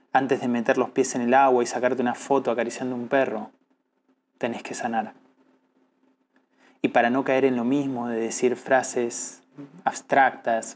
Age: 20-39